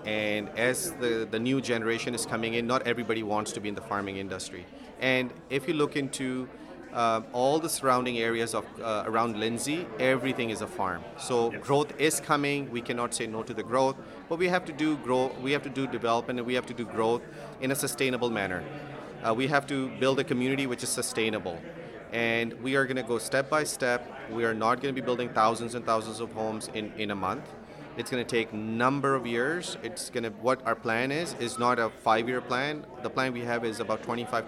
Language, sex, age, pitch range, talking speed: English, male, 30-49, 110-130 Hz, 225 wpm